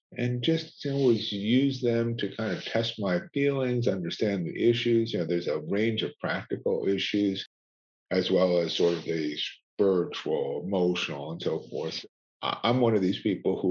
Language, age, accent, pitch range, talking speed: English, 50-69, American, 90-125 Hz, 170 wpm